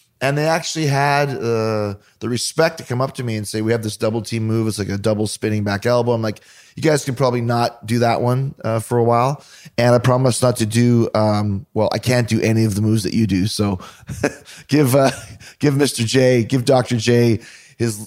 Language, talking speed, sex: English, 230 wpm, male